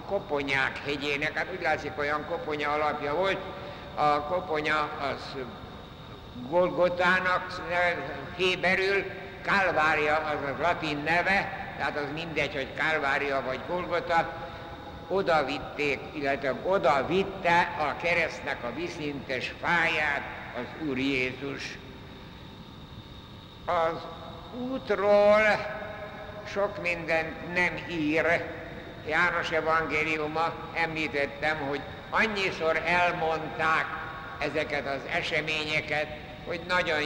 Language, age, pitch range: Hungarian, 60-79, 150-180 Hz